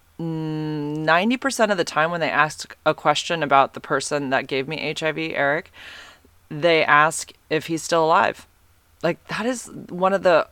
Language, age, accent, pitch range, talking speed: English, 30-49, American, 135-175 Hz, 160 wpm